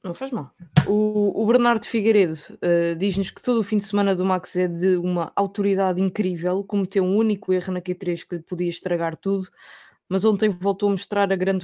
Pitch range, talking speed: 175-200 Hz, 200 wpm